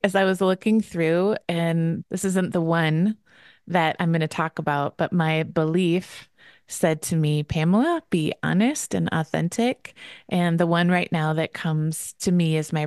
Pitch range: 165-195 Hz